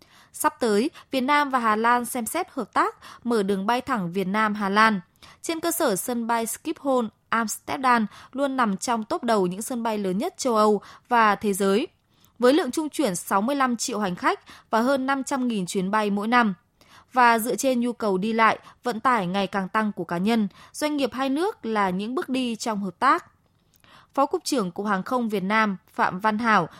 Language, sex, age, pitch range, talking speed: Vietnamese, female, 20-39, 200-265 Hz, 205 wpm